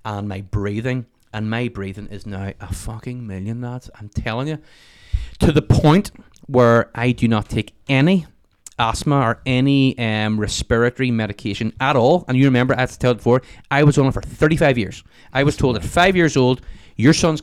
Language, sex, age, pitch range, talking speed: English, male, 30-49, 105-130 Hz, 195 wpm